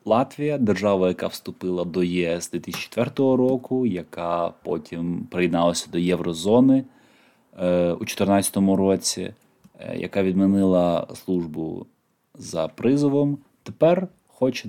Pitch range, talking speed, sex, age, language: 90-120 Hz, 95 wpm, male, 20-39, Ukrainian